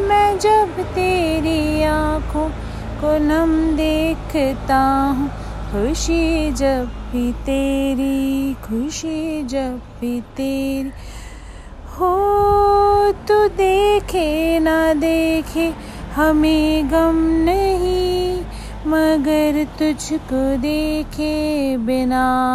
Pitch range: 275-365 Hz